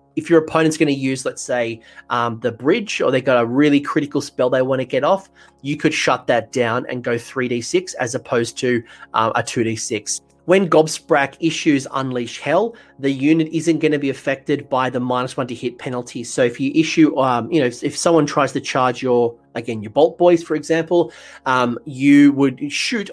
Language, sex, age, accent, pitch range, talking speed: English, male, 30-49, Australian, 120-150 Hz, 210 wpm